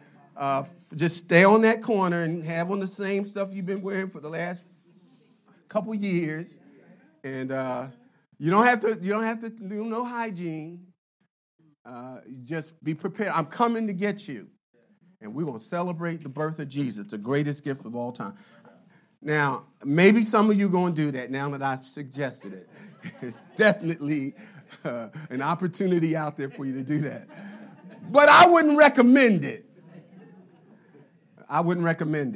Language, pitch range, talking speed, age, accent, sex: English, 140-200 Hz, 170 wpm, 40-59, American, male